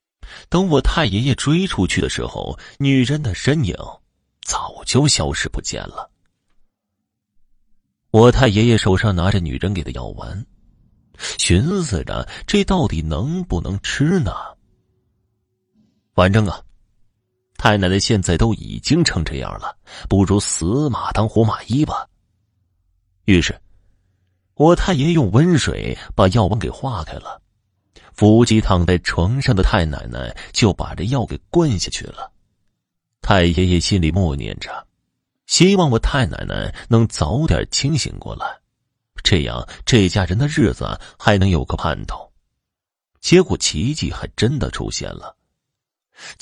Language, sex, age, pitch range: Chinese, male, 30-49, 90-115 Hz